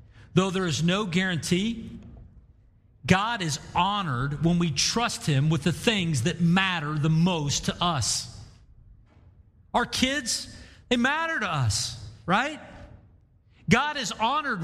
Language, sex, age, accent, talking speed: English, male, 40-59, American, 125 wpm